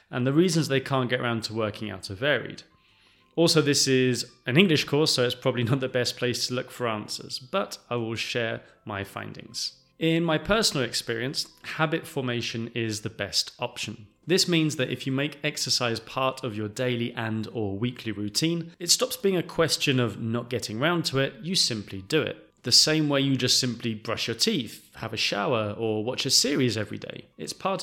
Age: 30-49